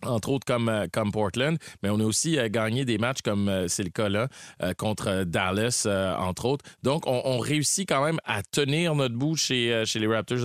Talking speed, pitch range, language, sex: 200 wpm, 105-135 Hz, French, male